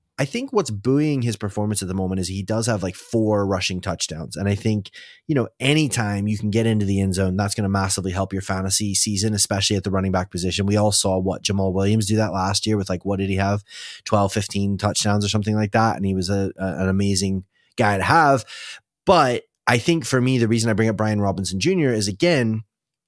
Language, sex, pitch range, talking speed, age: English, male, 95-120 Hz, 235 wpm, 20-39